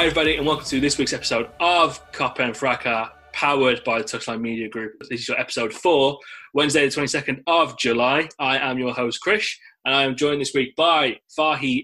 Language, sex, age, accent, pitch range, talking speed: English, male, 20-39, British, 125-150 Hz, 210 wpm